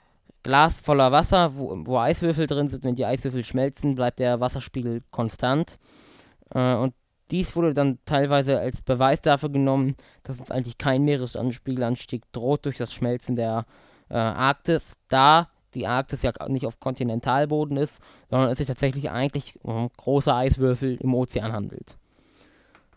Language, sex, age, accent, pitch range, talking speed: German, male, 20-39, German, 125-150 Hz, 145 wpm